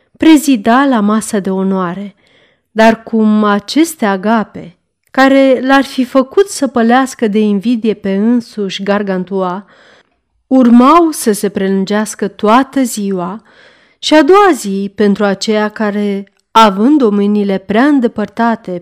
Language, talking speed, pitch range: Romanian, 120 wpm, 195-255 Hz